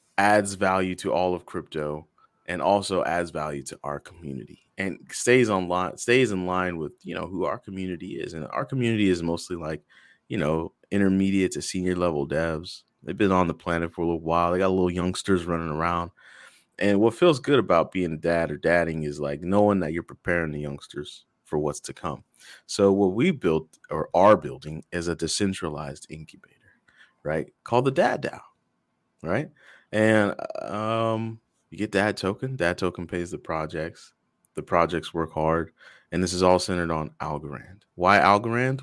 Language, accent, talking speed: English, American, 180 wpm